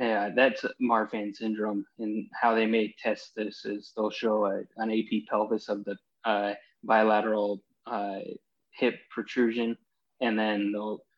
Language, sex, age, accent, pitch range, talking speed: English, male, 20-39, American, 110-115 Hz, 140 wpm